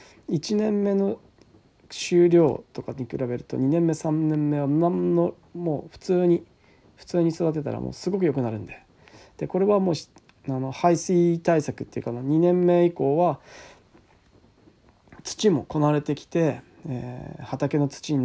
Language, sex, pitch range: Japanese, male, 135-180 Hz